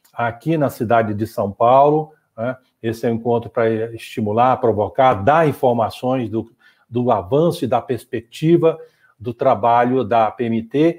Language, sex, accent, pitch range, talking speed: Portuguese, male, Brazilian, 130-175 Hz, 135 wpm